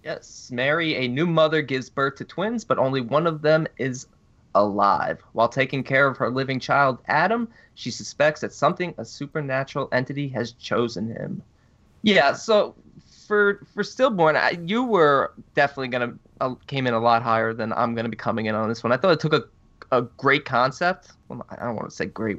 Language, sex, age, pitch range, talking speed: English, male, 20-39, 115-140 Hz, 205 wpm